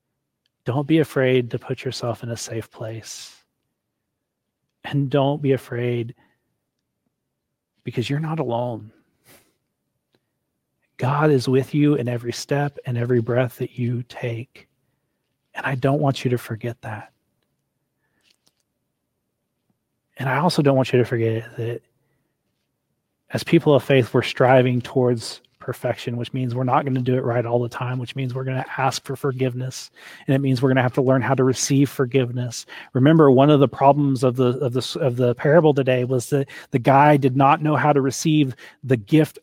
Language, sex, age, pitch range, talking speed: English, male, 40-59, 120-140 Hz, 170 wpm